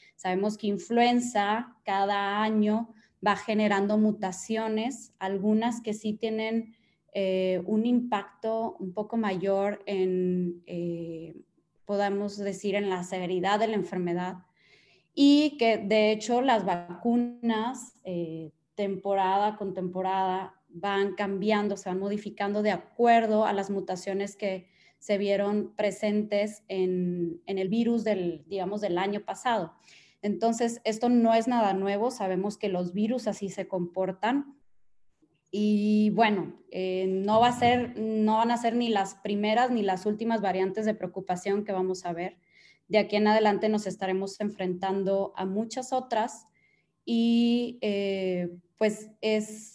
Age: 20-39